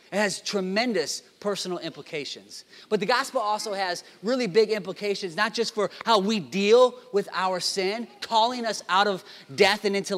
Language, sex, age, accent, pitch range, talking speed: English, male, 30-49, American, 175-215 Hz, 170 wpm